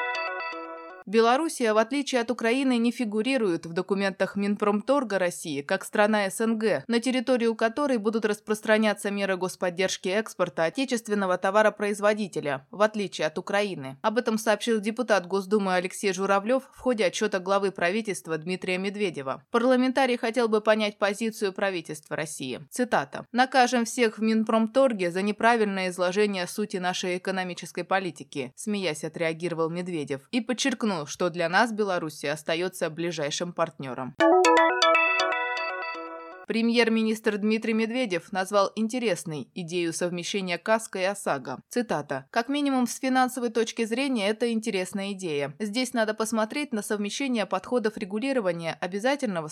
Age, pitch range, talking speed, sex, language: 20-39, 175-225 Hz, 120 wpm, female, Russian